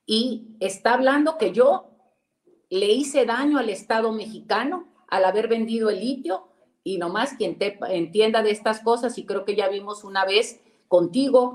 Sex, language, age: female, Spanish, 40-59